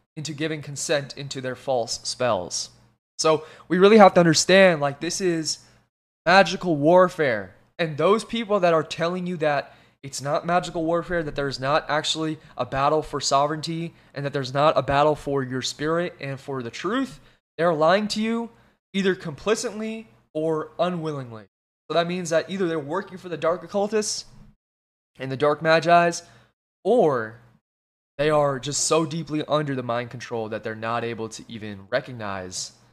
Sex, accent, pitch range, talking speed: male, American, 130-170 Hz, 165 wpm